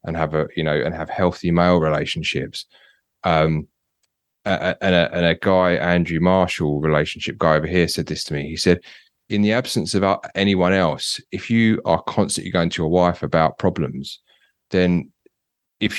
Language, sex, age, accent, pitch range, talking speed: English, male, 30-49, British, 85-100 Hz, 170 wpm